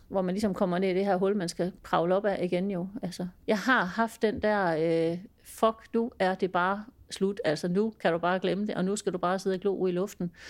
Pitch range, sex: 180-245 Hz, female